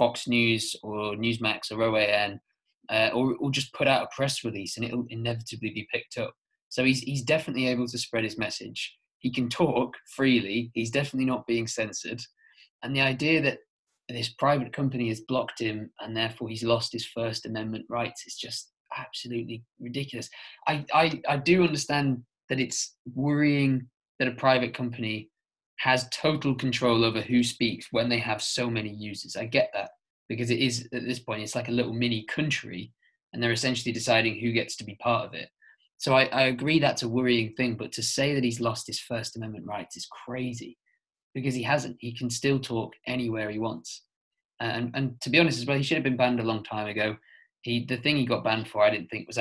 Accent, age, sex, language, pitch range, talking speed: British, 20-39, male, English, 115-130 Hz, 205 wpm